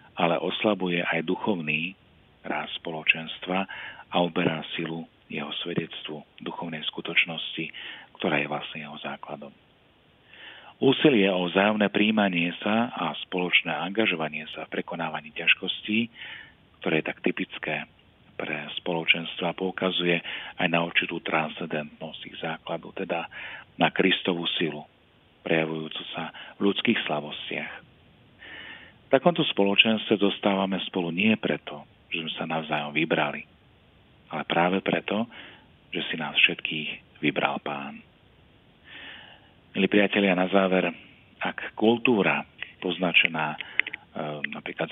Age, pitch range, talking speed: 40-59, 80-100 Hz, 110 wpm